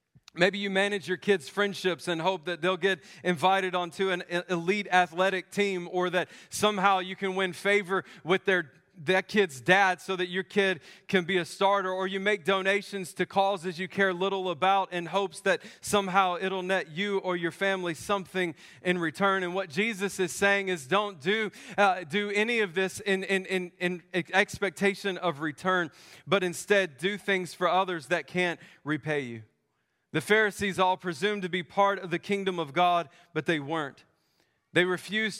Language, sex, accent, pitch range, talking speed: English, male, American, 175-200 Hz, 185 wpm